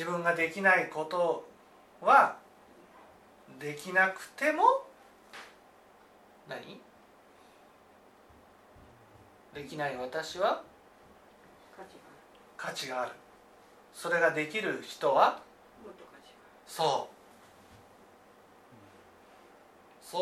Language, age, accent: Japanese, 40-59, native